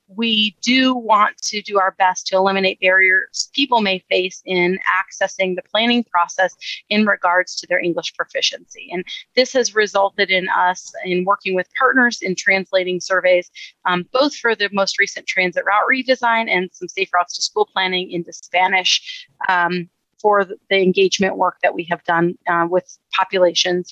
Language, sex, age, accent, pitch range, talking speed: English, female, 30-49, American, 190-235 Hz, 170 wpm